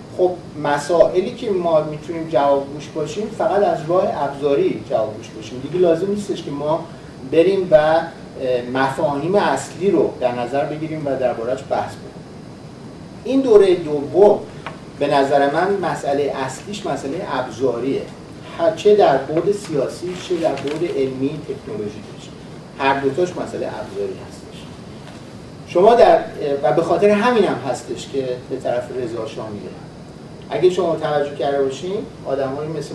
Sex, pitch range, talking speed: male, 135-185 Hz, 140 wpm